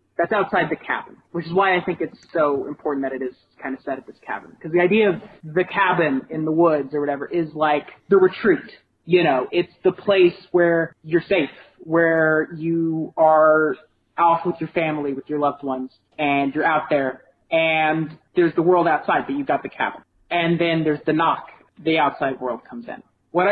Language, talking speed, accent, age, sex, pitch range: English, 205 wpm, American, 30-49, male, 145-185 Hz